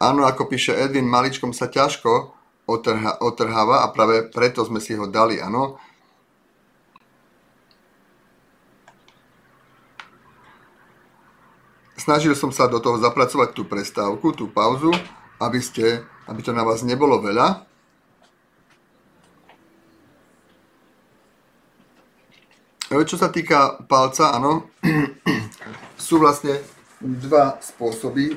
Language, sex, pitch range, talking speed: Slovak, male, 115-145 Hz, 85 wpm